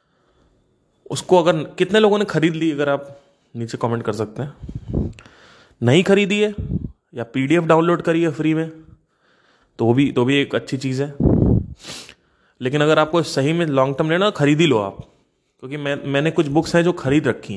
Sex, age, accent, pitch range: male, 20-39, native, 125-160 Hz